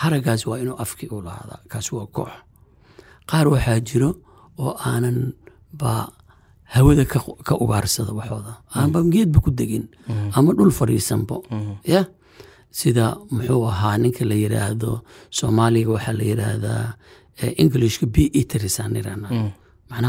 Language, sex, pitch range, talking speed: Finnish, male, 105-125 Hz, 100 wpm